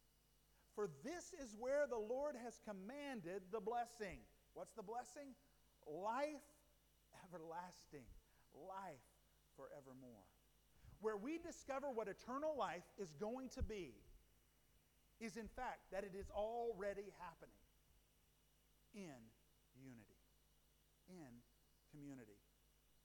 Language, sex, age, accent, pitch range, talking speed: English, male, 50-69, American, 165-250 Hz, 100 wpm